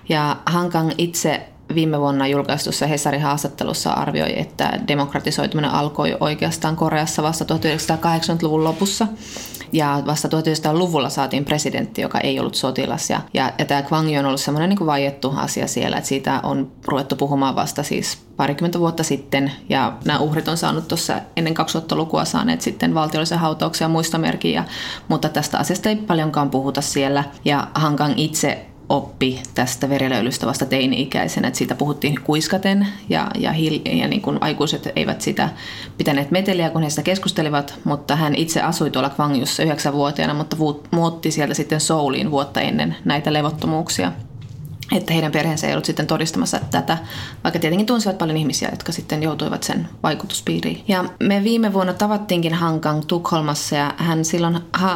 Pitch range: 140-165 Hz